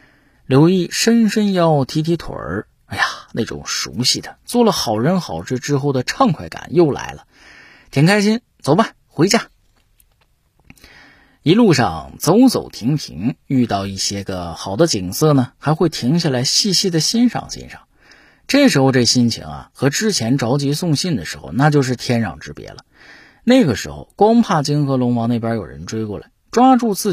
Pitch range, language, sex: 115-175 Hz, Chinese, male